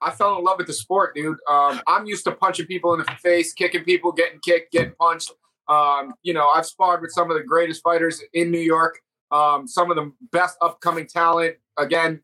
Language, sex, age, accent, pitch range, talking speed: English, male, 30-49, American, 165-195 Hz, 220 wpm